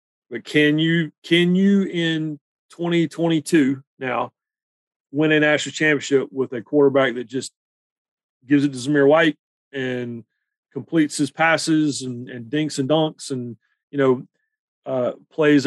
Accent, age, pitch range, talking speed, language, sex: American, 40-59, 130-155 Hz, 140 wpm, English, male